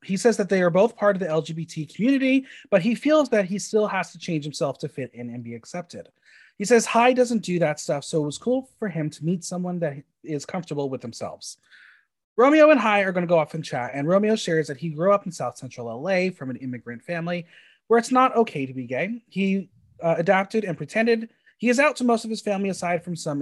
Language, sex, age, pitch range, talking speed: English, male, 30-49, 145-205 Hz, 245 wpm